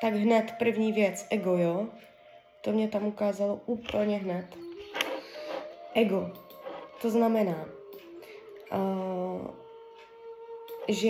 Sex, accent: female, native